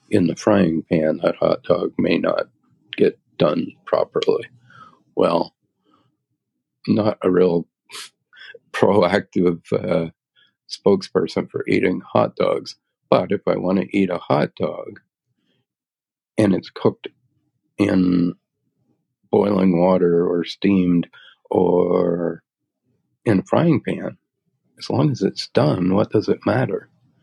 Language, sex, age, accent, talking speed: English, male, 50-69, American, 120 wpm